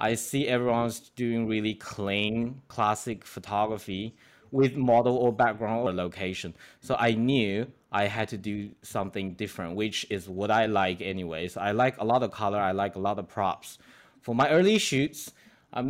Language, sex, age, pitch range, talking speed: English, male, 20-39, 100-130 Hz, 175 wpm